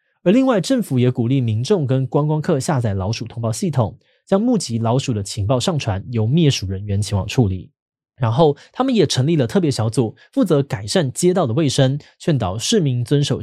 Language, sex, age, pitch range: Chinese, male, 20-39, 115-165 Hz